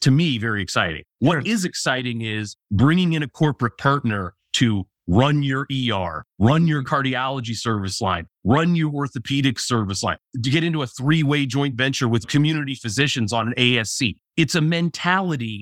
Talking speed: 165 wpm